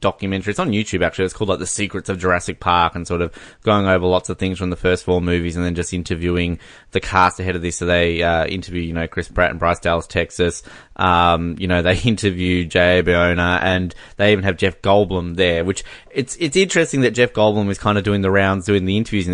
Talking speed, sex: 245 wpm, male